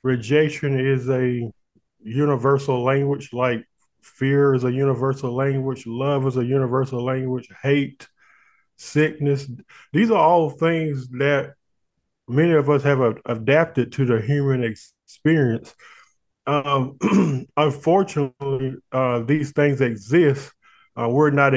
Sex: male